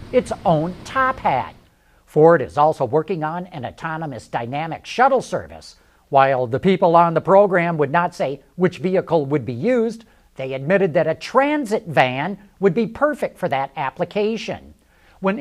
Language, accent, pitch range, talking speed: English, American, 145-215 Hz, 160 wpm